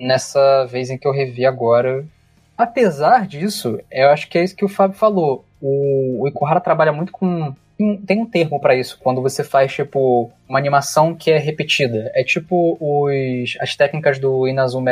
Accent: Brazilian